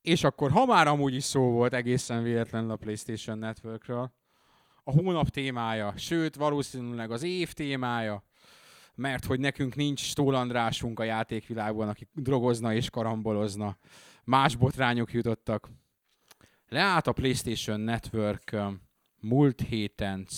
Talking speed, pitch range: 120 wpm, 105-135 Hz